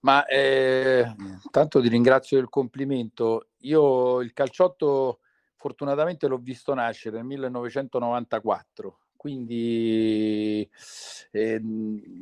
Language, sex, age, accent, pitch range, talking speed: Italian, male, 50-69, native, 110-140 Hz, 90 wpm